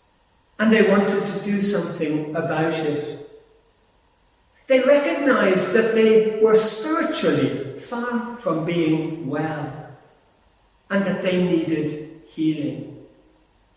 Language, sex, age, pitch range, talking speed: English, male, 50-69, 140-205 Hz, 100 wpm